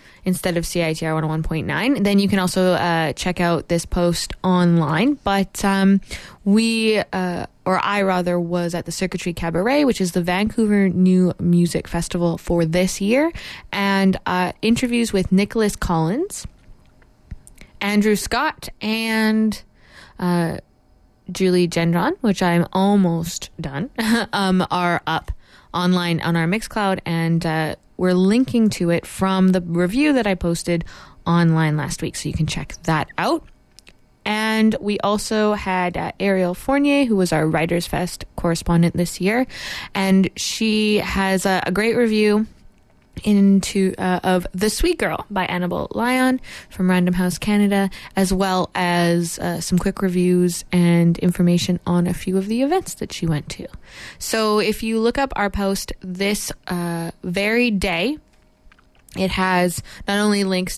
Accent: American